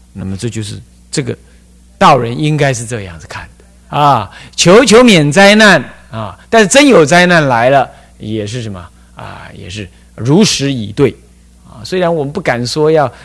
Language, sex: Chinese, male